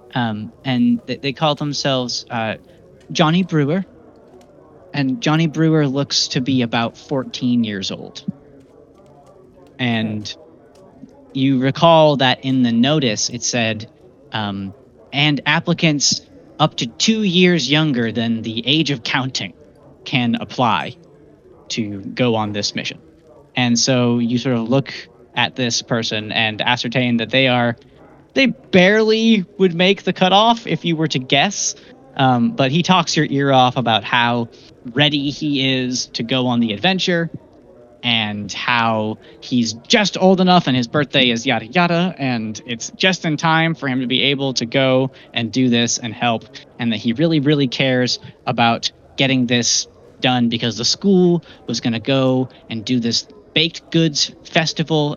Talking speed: 150 wpm